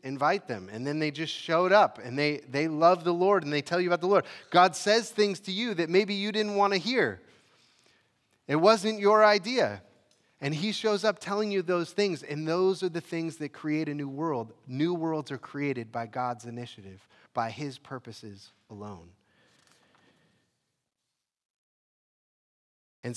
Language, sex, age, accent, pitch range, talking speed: English, male, 30-49, American, 115-155 Hz, 175 wpm